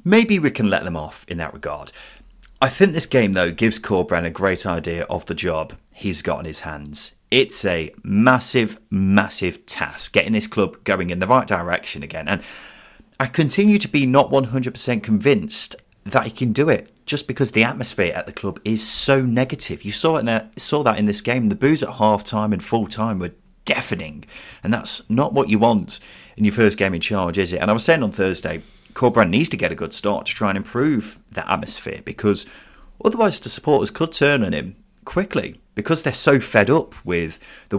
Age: 30-49